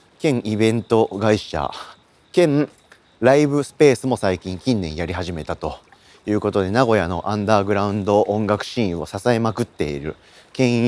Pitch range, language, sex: 100-140 Hz, Japanese, male